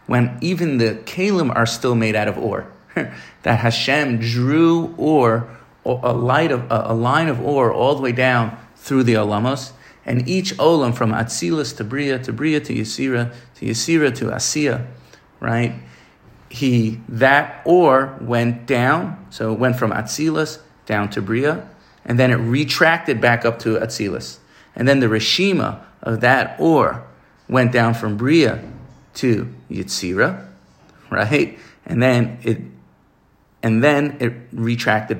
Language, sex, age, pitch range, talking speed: English, male, 40-59, 110-135 Hz, 150 wpm